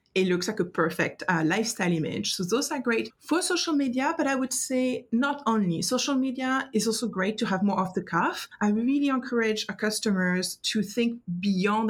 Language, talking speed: English, 200 wpm